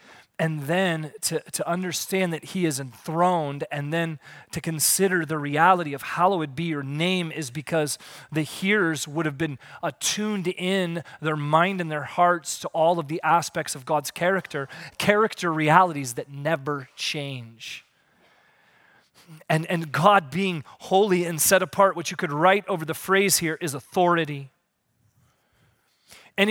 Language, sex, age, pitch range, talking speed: English, male, 30-49, 155-205 Hz, 150 wpm